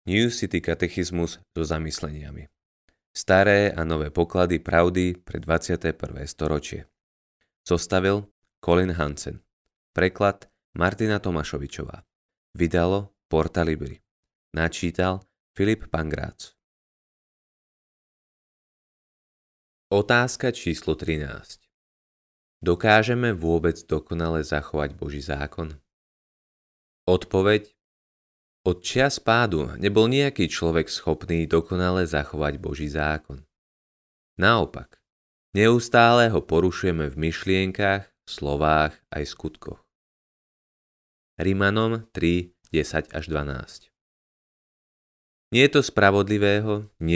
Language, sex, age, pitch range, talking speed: Slovak, male, 20-39, 75-95 Hz, 85 wpm